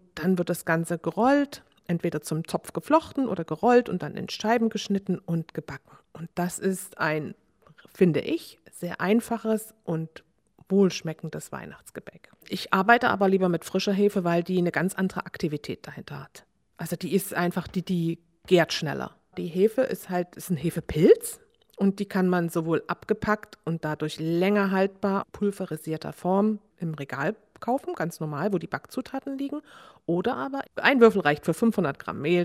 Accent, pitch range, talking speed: German, 165-220 Hz, 165 wpm